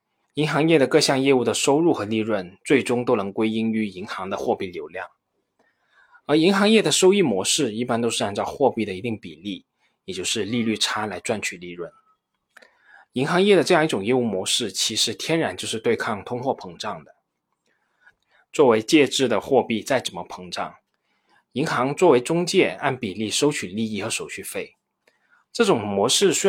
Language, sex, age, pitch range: Chinese, male, 20-39, 105-175 Hz